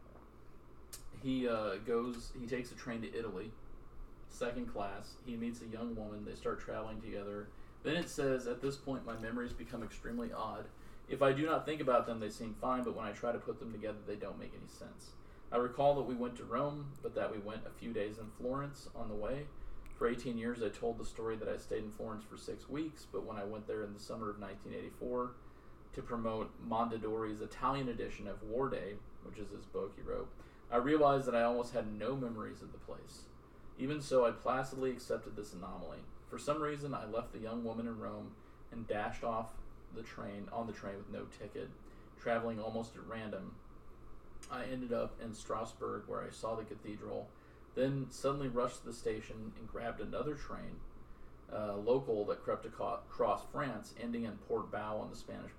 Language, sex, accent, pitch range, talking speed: English, male, American, 105-130 Hz, 205 wpm